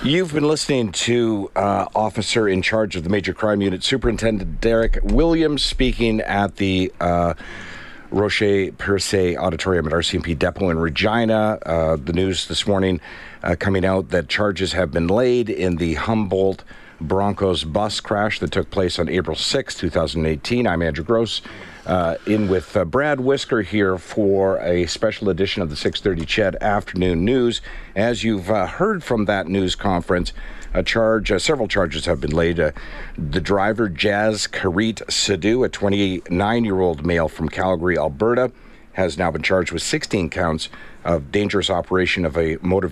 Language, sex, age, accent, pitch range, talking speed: English, male, 50-69, American, 85-110 Hz, 160 wpm